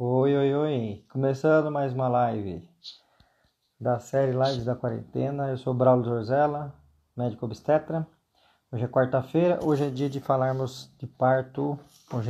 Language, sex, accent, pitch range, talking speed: Portuguese, male, Brazilian, 120-135 Hz, 145 wpm